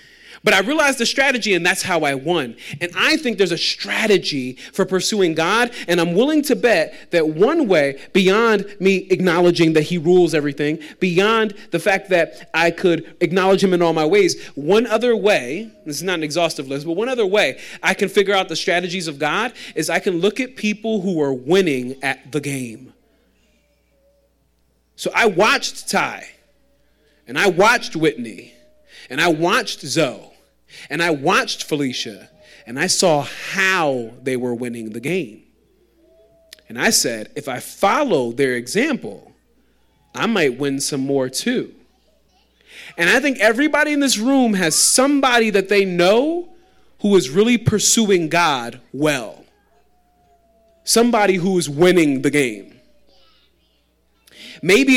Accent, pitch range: American, 155-225 Hz